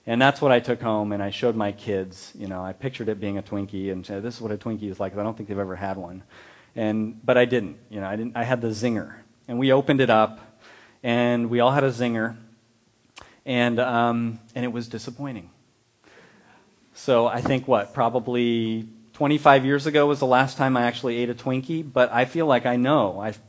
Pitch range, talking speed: 110-130 Hz, 225 wpm